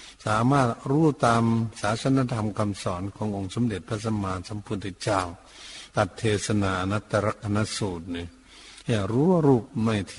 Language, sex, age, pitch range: Thai, male, 60-79, 100-125 Hz